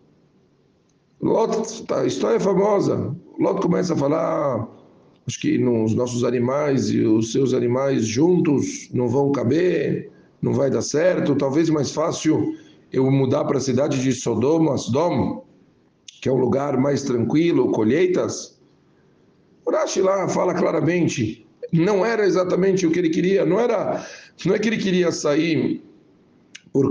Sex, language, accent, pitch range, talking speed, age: male, Portuguese, Brazilian, 130-190 Hz, 135 wpm, 60-79